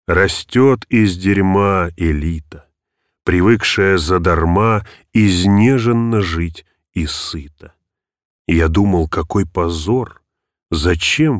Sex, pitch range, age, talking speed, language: male, 85-110 Hz, 30-49, 80 wpm, Russian